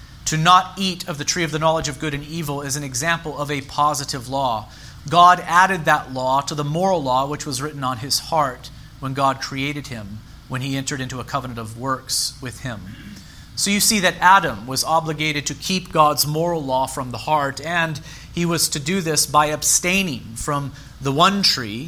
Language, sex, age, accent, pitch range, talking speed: English, male, 40-59, American, 130-165 Hz, 205 wpm